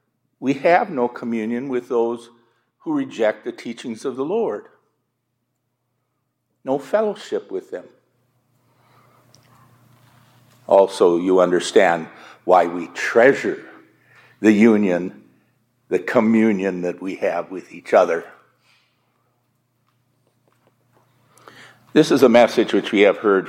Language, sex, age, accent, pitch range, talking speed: English, male, 60-79, American, 115-130 Hz, 105 wpm